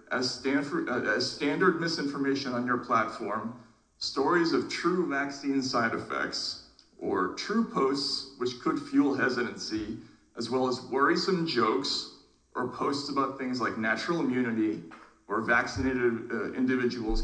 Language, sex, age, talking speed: English, male, 40-59, 130 wpm